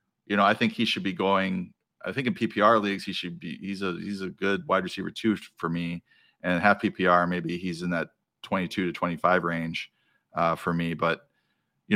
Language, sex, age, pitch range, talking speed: English, male, 40-59, 90-110 Hz, 210 wpm